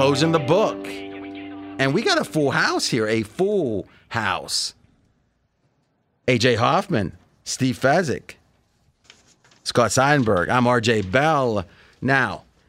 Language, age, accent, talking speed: English, 30-49, American, 110 wpm